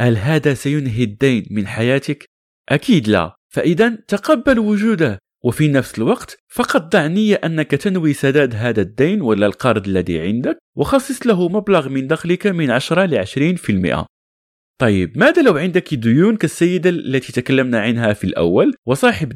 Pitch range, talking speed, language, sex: 115-180 Hz, 145 wpm, Arabic, male